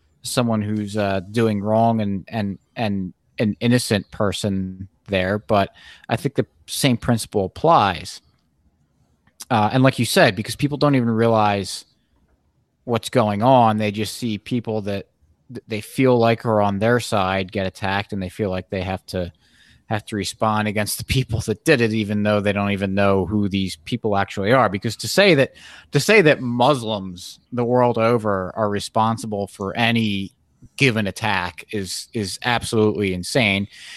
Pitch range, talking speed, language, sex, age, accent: 100-115 Hz, 165 wpm, English, male, 30-49, American